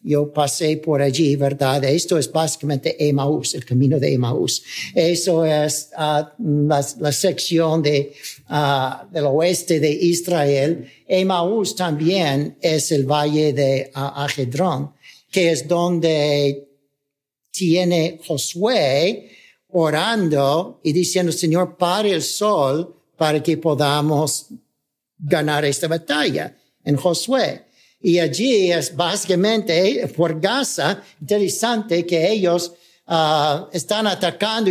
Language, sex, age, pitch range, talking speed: Spanish, male, 60-79, 150-190 Hz, 110 wpm